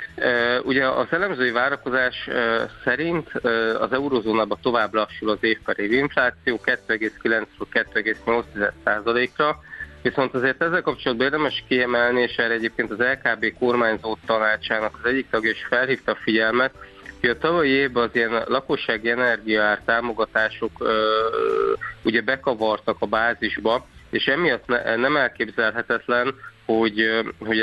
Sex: male